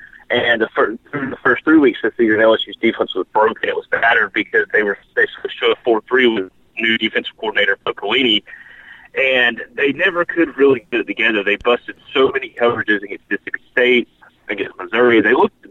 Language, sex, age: English, male, 30-49